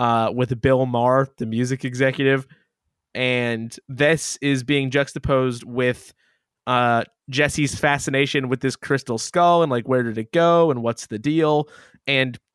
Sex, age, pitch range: male, 20-39, 130-165 Hz